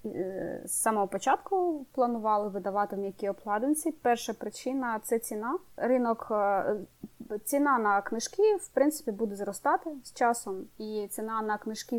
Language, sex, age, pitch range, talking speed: Ukrainian, female, 20-39, 205-260 Hz, 125 wpm